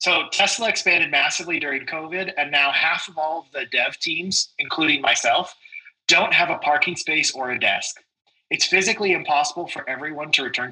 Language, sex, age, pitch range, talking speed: English, male, 20-39, 150-185 Hz, 175 wpm